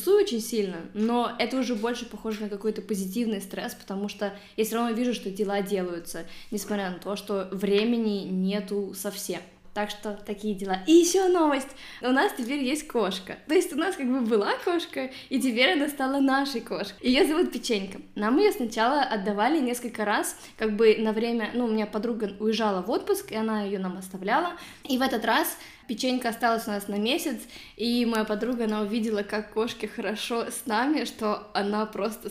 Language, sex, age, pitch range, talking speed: Russian, female, 20-39, 205-255 Hz, 190 wpm